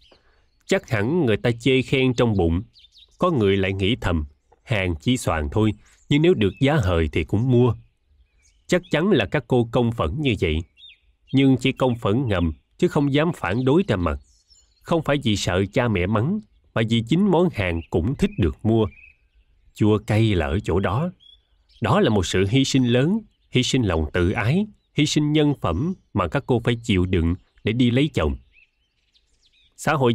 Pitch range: 90-135 Hz